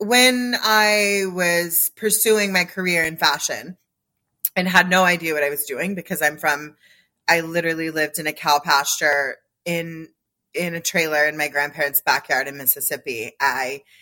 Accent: American